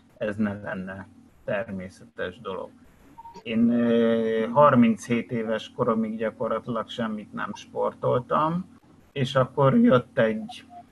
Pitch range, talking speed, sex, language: 110-135 Hz, 95 wpm, male, Hungarian